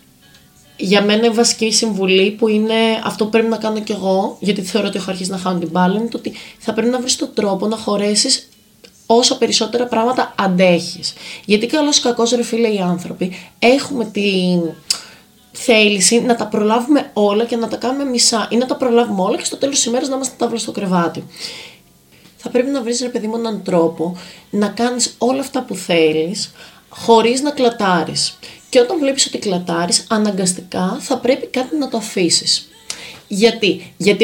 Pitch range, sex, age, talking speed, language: 180-240 Hz, female, 20-39, 180 wpm, Greek